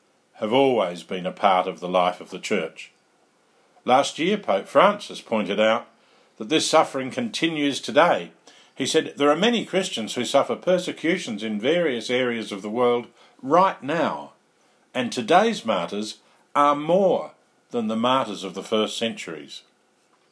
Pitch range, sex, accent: 105-145 Hz, male, Australian